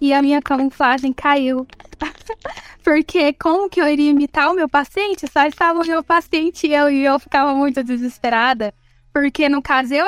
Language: Portuguese